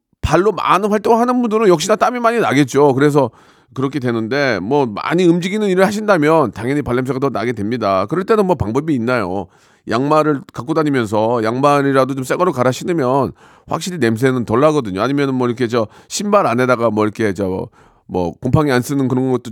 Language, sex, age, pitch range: Korean, male, 40-59, 115-170 Hz